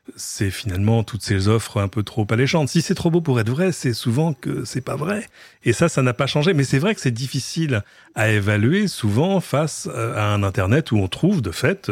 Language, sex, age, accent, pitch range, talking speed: French, male, 40-59, French, 105-145 Hz, 230 wpm